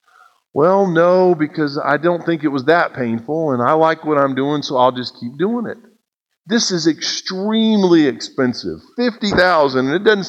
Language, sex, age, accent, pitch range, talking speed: English, male, 50-69, American, 120-180 Hz, 175 wpm